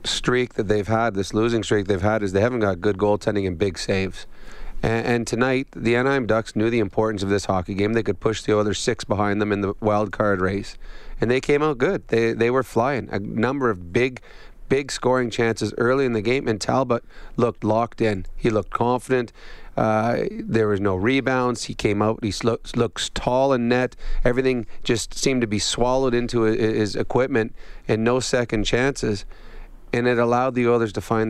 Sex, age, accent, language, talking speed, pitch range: male, 30-49, American, English, 205 wpm, 105-125 Hz